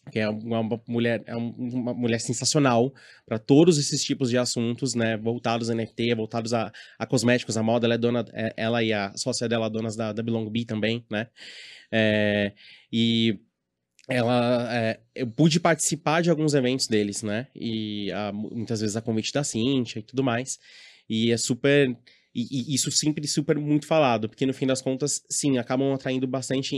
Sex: male